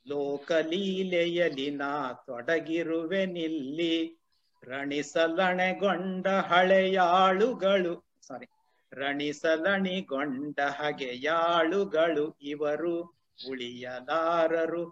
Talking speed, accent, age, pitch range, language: 45 wpm, native, 50-69, 150-195 Hz, Kannada